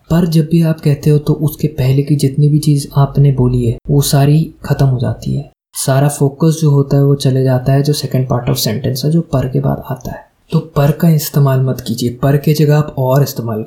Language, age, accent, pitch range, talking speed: Hindi, 20-39, native, 130-150 Hz, 240 wpm